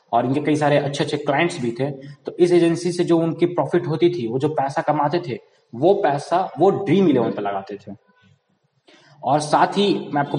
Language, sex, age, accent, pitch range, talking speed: Hindi, male, 20-39, native, 140-175 Hz, 210 wpm